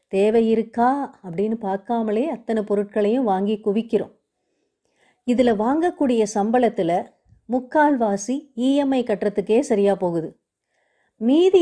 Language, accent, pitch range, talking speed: Tamil, native, 210-265 Hz, 90 wpm